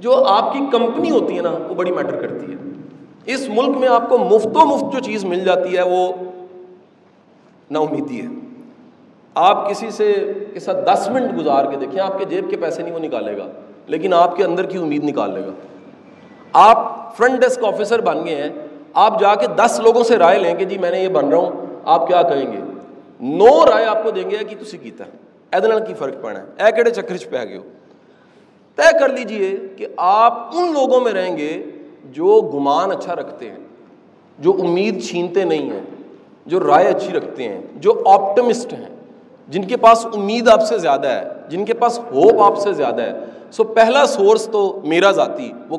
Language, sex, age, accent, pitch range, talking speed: English, male, 40-59, Indian, 195-260 Hz, 165 wpm